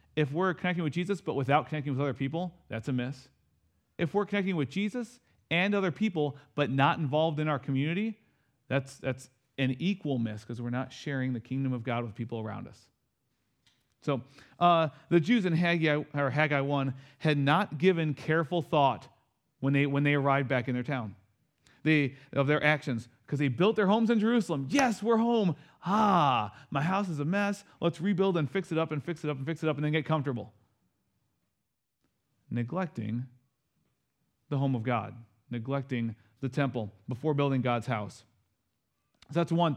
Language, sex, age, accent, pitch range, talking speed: English, male, 40-59, American, 125-165 Hz, 185 wpm